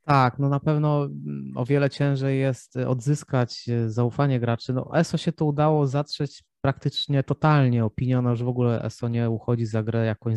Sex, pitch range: male, 120-140 Hz